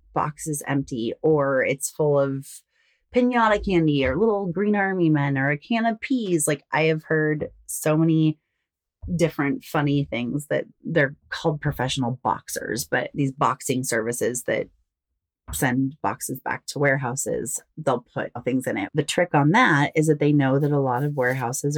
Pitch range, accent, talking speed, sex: 140-195 Hz, American, 170 wpm, female